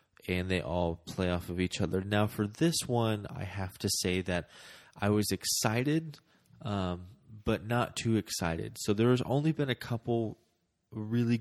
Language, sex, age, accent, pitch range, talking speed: English, male, 20-39, American, 95-110 Hz, 170 wpm